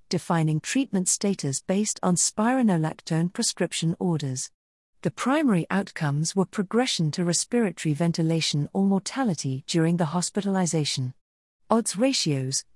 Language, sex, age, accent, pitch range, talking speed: English, female, 40-59, British, 160-215 Hz, 110 wpm